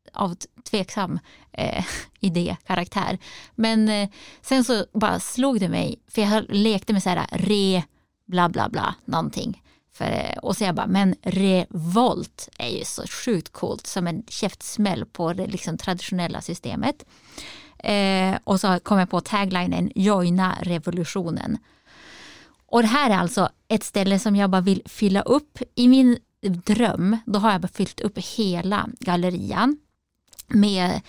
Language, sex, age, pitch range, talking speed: Swedish, female, 20-39, 185-225 Hz, 150 wpm